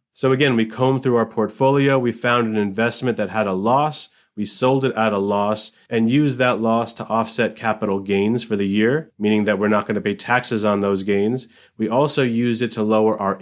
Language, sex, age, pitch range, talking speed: English, male, 30-49, 105-125 Hz, 225 wpm